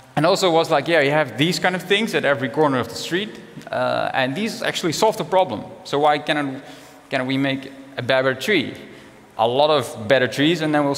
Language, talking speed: English, 230 wpm